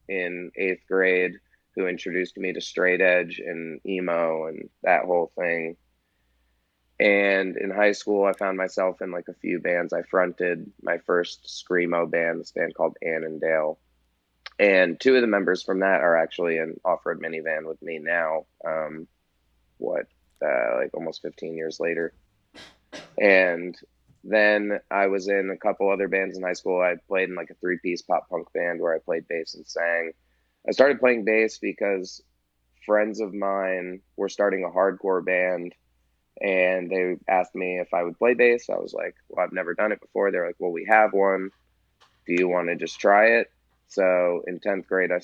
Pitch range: 80-95 Hz